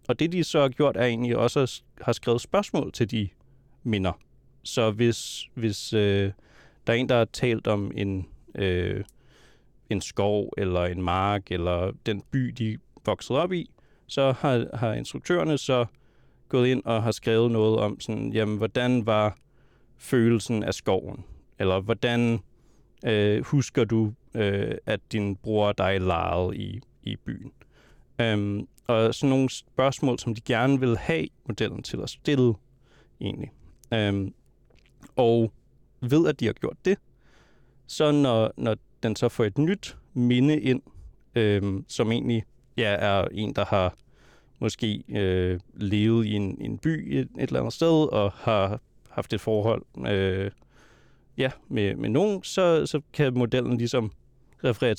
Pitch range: 105-130 Hz